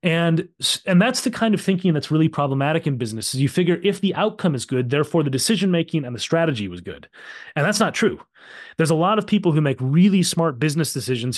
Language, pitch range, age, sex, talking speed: English, 130-165 Hz, 30-49, male, 225 wpm